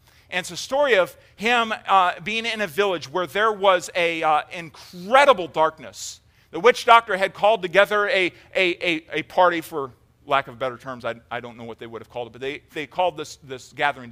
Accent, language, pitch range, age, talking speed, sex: American, English, 130-185 Hz, 40-59, 215 wpm, male